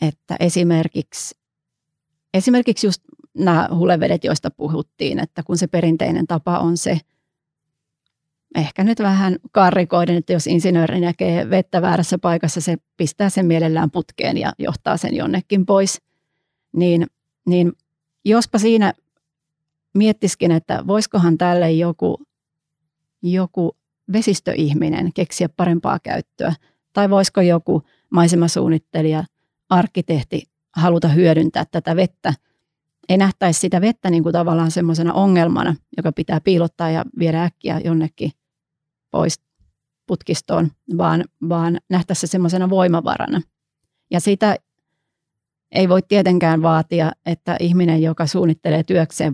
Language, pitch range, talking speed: Finnish, 160-180 Hz, 115 wpm